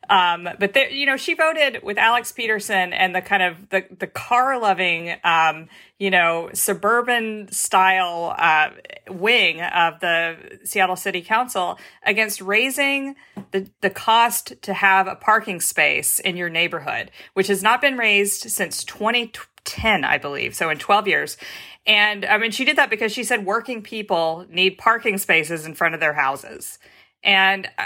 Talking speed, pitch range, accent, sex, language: 155 wpm, 180-225 Hz, American, female, English